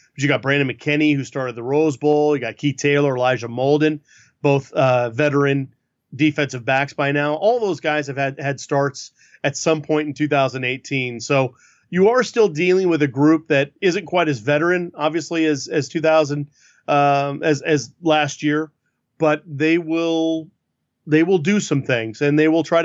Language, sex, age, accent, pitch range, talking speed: English, male, 30-49, American, 140-165 Hz, 180 wpm